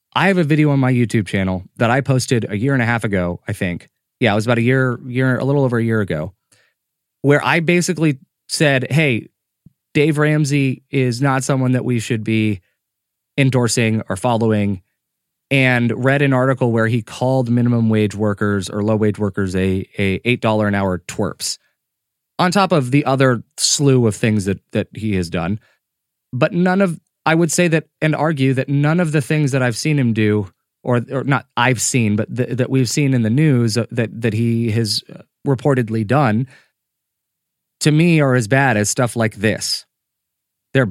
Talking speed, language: 190 wpm, English